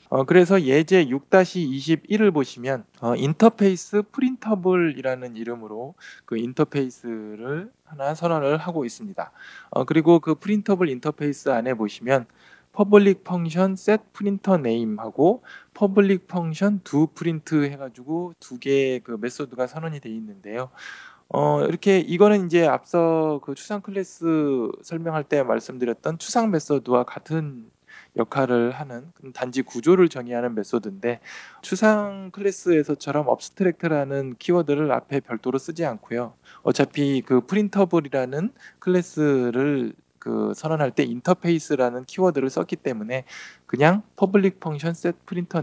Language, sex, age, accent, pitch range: Korean, male, 20-39, native, 125-180 Hz